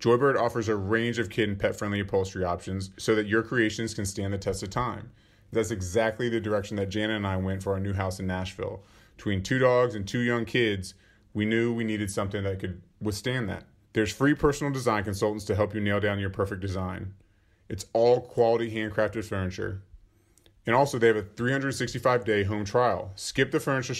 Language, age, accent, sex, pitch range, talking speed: English, 30-49, American, male, 100-120 Hz, 205 wpm